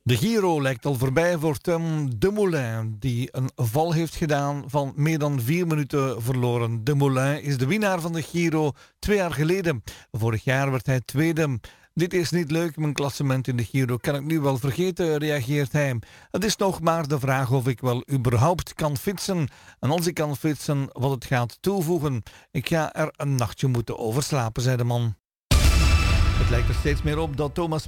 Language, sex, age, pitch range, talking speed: Dutch, male, 40-59, 125-160 Hz, 195 wpm